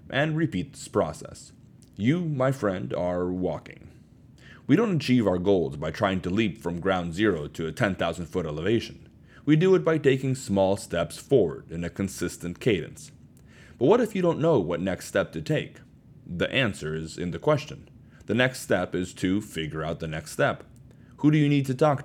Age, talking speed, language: 30-49, 195 wpm, English